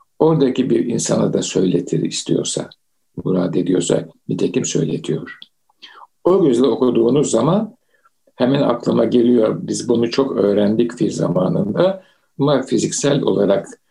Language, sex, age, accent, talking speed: Turkish, male, 60-79, native, 110 wpm